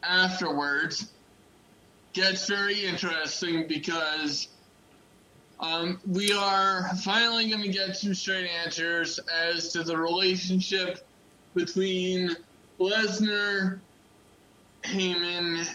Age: 20-39